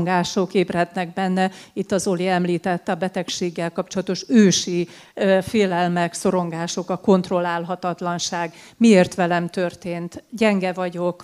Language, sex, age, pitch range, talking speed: Hungarian, female, 40-59, 175-195 Hz, 100 wpm